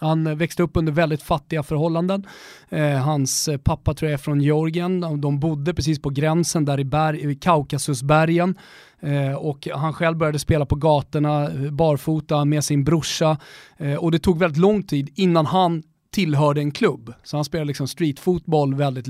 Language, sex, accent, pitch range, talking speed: Swedish, male, native, 140-170 Hz, 175 wpm